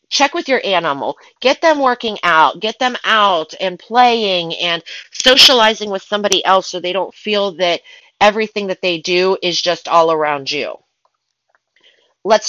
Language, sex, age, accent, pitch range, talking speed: English, female, 40-59, American, 180-235 Hz, 160 wpm